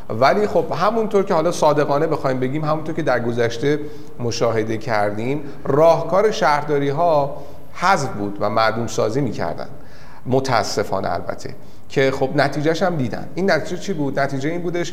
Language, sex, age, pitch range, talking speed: Persian, male, 40-59, 115-160 Hz, 150 wpm